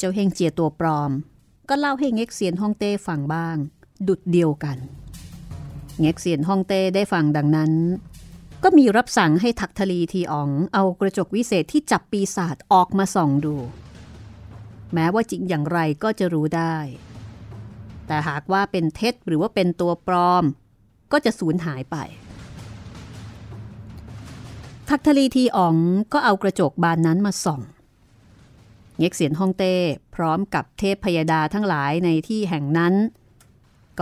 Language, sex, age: Thai, female, 30-49